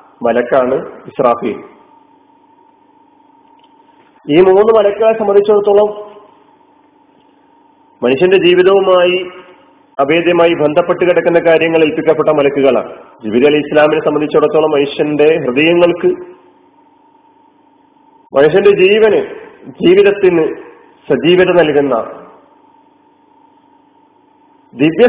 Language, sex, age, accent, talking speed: Malayalam, male, 40-59, native, 55 wpm